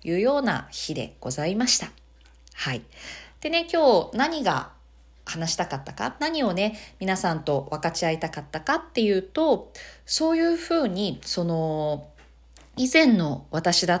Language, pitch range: Japanese, 165-275 Hz